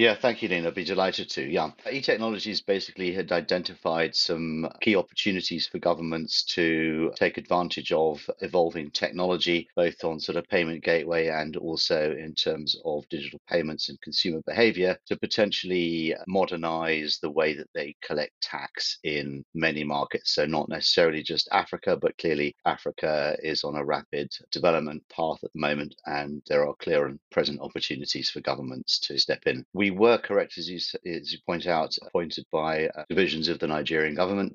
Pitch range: 75-90 Hz